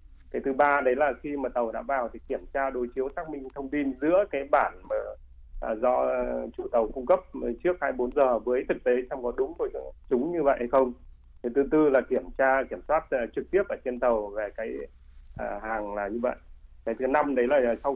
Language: Vietnamese